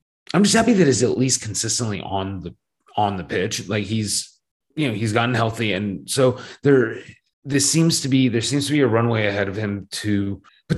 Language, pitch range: English, 100-135 Hz